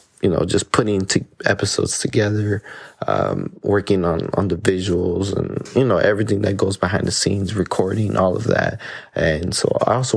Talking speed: 175 wpm